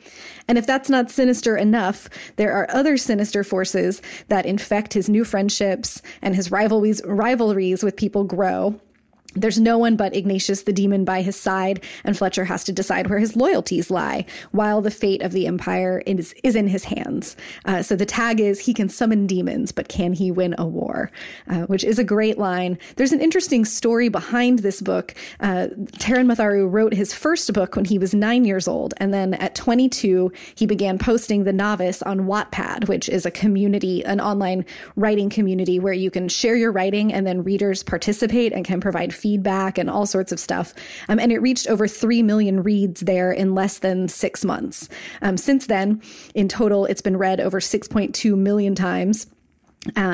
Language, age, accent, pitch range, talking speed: English, 20-39, American, 190-220 Hz, 190 wpm